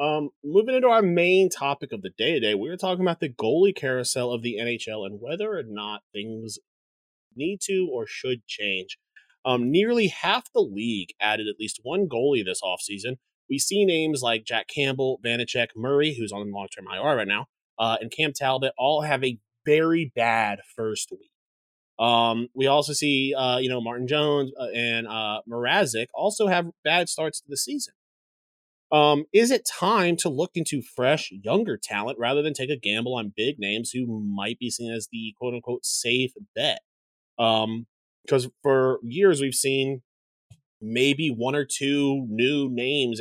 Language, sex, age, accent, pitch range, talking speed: English, male, 30-49, American, 110-150 Hz, 180 wpm